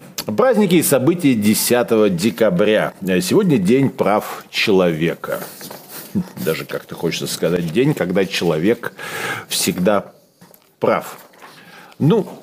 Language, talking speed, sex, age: Russian, 90 wpm, male, 40-59